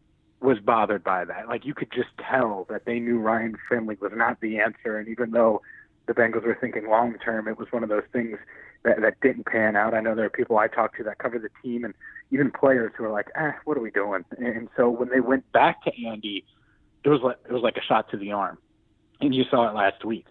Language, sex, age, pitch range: English, male, 30-49, 110-130 Hz